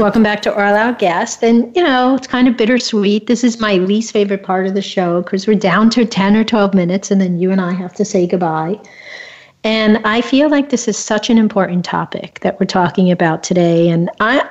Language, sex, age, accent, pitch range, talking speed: English, female, 50-69, American, 180-215 Hz, 235 wpm